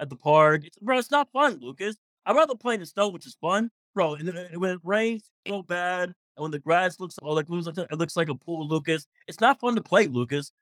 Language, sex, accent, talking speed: English, male, American, 265 wpm